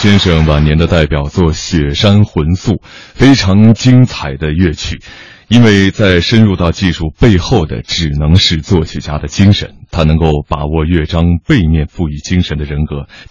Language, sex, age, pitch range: Chinese, male, 30-49, 80-105 Hz